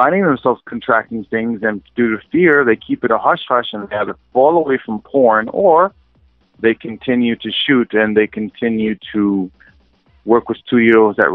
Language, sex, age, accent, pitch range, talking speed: English, male, 30-49, American, 105-120 Hz, 180 wpm